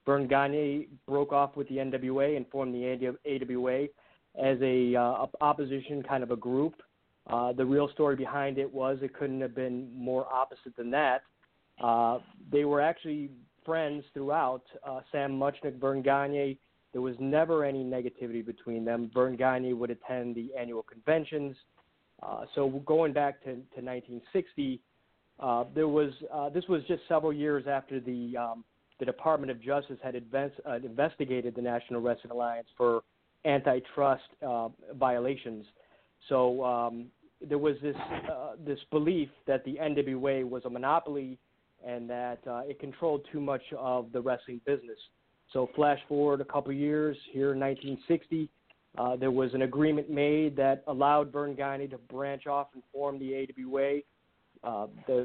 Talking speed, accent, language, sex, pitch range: 160 wpm, American, English, male, 125-145 Hz